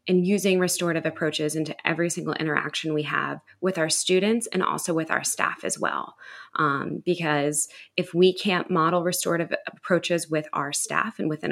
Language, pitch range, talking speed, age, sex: English, 155-180 Hz, 170 wpm, 20-39, female